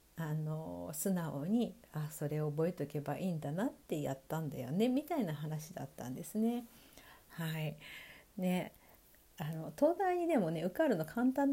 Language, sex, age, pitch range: Japanese, female, 50-69, 165-270 Hz